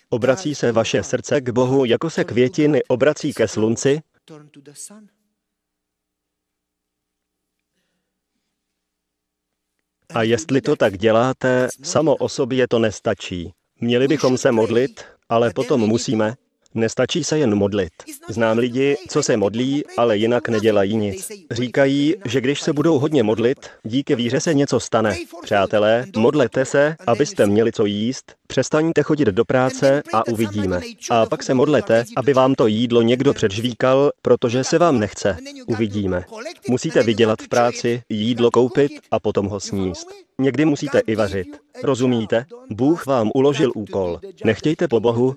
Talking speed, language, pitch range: 140 wpm, Slovak, 110-140 Hz